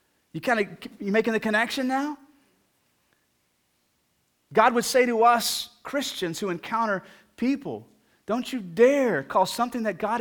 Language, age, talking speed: English, 30-49, 140 wpm